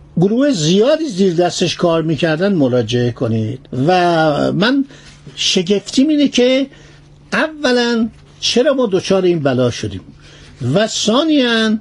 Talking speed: 110 wpm